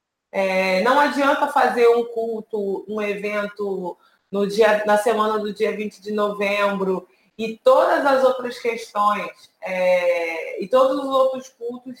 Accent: Brazilian